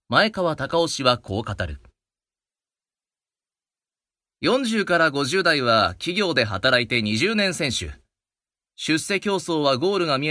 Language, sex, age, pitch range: Japanese, male, 30-49, 105-165 Hz